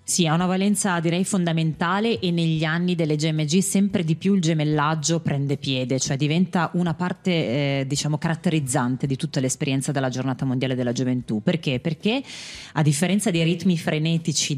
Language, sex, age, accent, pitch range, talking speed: Italian, female, 30-49, native, 140-170 Hz, 165 wpm